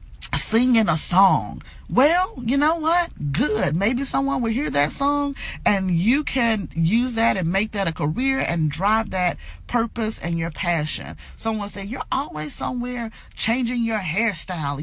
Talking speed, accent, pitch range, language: 160 wpm, American, 145-225 Hz, English